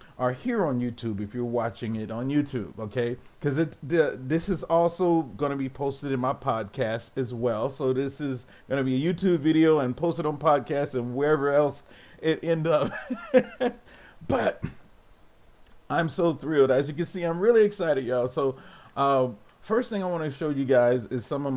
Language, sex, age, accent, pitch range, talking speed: English, male, 40-59, American, 110-150 Hz, 190 wpm